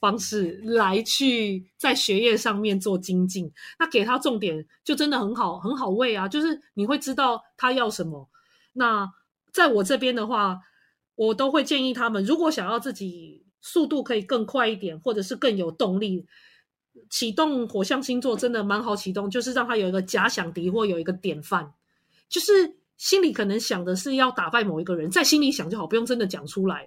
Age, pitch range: 30-49, 195-255 Hz